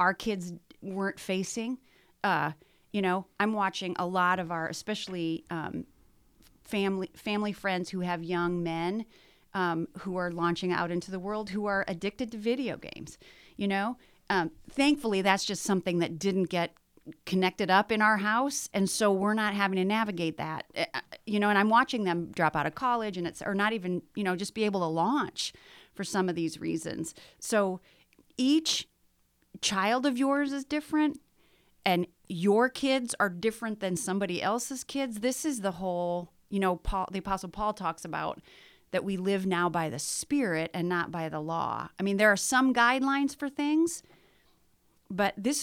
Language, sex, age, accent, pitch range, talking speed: English, female, 30-49, American, 180-235 Hz, 180 wpm